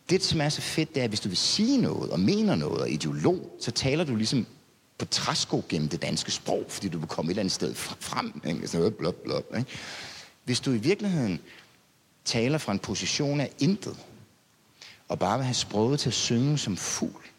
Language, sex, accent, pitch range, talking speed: Danish, male, native, 105-145 Hz, 215 wpm